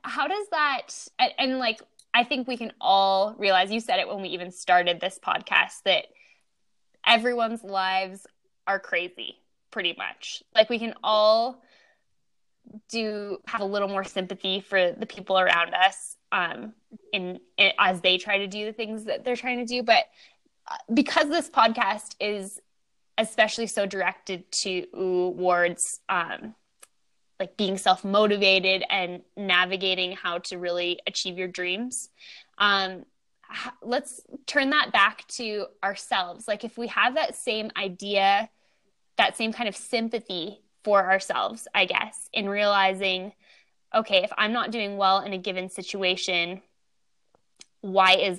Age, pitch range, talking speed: 10-29, 185-230 Hz, 145 wpm